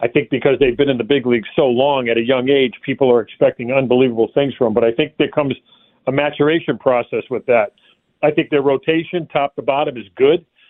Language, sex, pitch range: English, male, 130-155 Hz